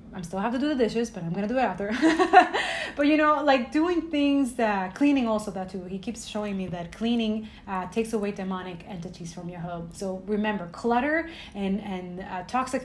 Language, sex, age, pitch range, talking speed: English, female, 30-49, 200-250 Hz, 215 wpm